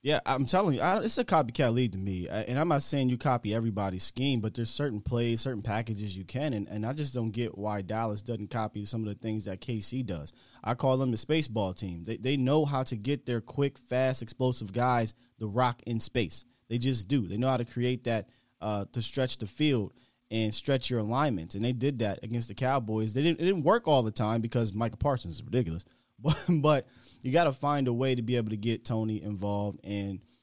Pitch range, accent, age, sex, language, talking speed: 110-135 Hz, American, 20-39, male, English, 235 wpm